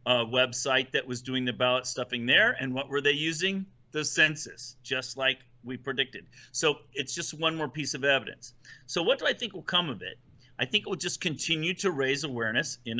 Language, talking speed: English, 215 wpm